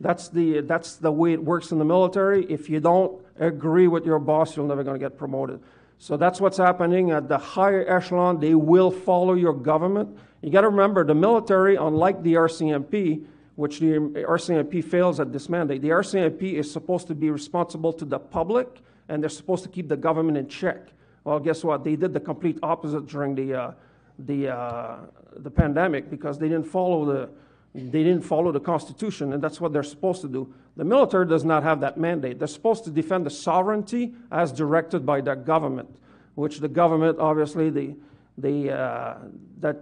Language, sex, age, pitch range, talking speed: English, male, 50-69, 150-180 Hz, 195 wpm